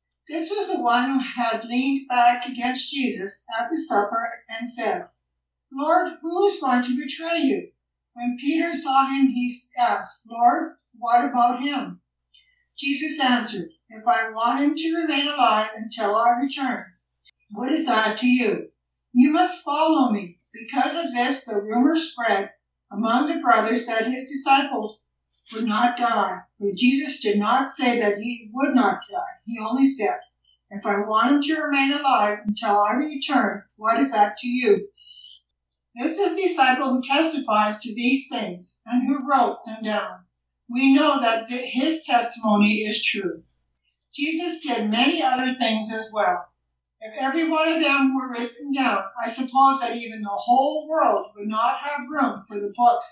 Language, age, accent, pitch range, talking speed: English, 60-79, American, 220-280 Hz, 165 wpm